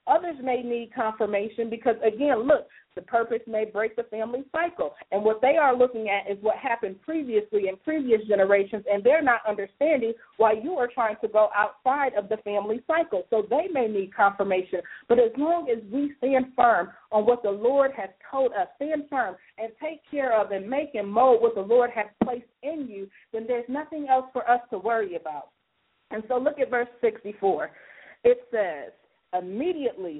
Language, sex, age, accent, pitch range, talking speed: English, female, 40-59, American, 210-260 Hz, 190 wpm